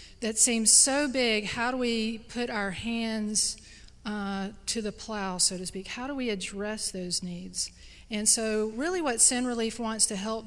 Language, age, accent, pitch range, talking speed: English, 40-59, American, 210-245 Hz, 185 wpm